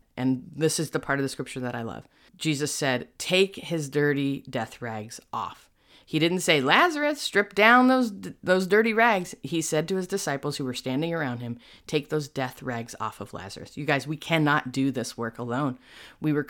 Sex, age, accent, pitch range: female, 30-49, American, 120-155 Hz